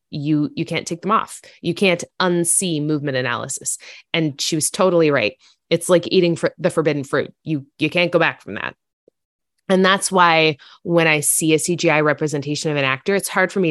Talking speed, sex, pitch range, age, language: 200 wpm, female, 135-175 Hz, 20-39, English